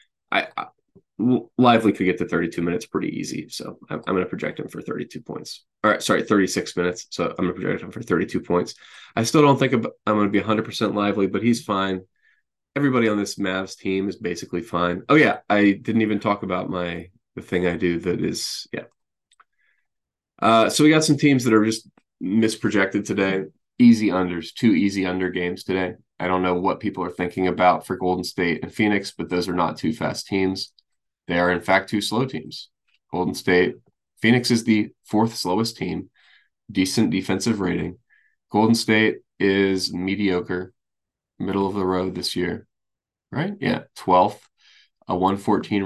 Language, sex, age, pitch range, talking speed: English, male, 20-39, 90-110 Hz, 185 wpm